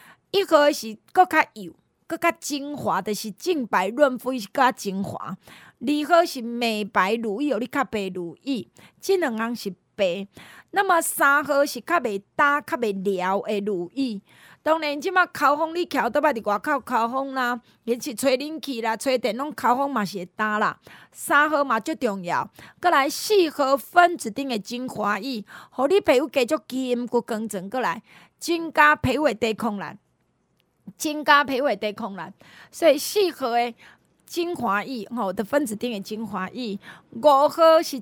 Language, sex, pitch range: Chinese, female, 215-295 Hz